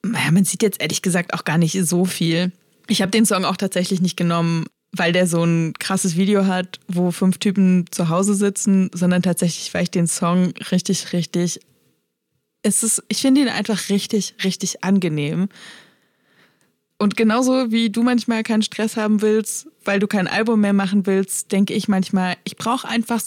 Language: German